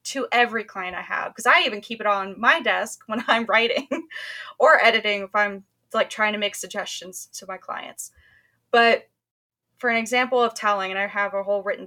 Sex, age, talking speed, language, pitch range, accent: female, 10-29, 200 wpm, English, 200-255 Hz, American